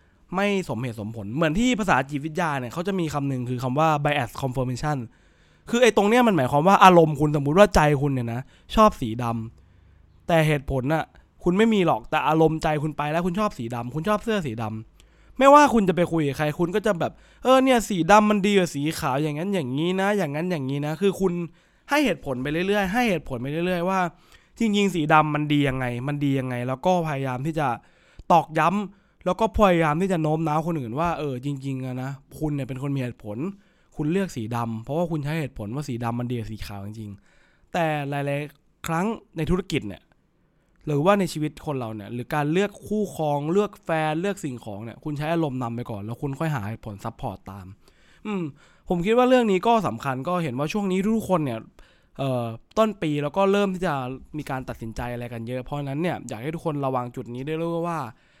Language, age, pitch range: English, 20-39, 130-185 Hz